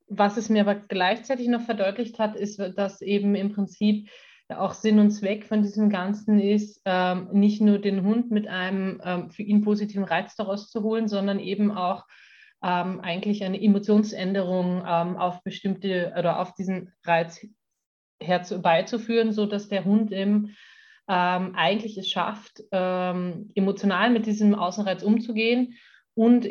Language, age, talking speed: German, 30-49, 150 wpm